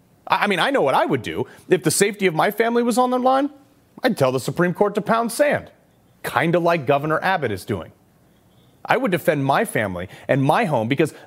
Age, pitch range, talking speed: 30-49, 160-245 Hz, 225 wpm